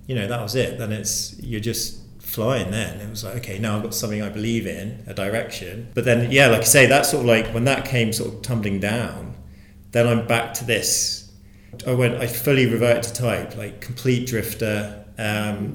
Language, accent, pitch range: English, British, 100-120 Hz